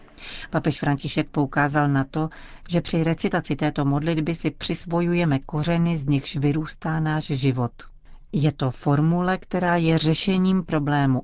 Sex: female